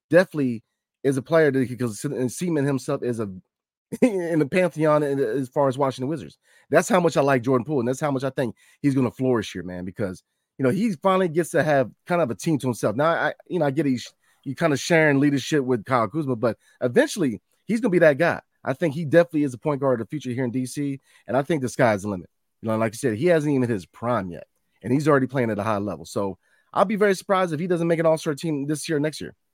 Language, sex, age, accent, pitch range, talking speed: English, male, 30-49, American, 120-155 Hz, 280 wpm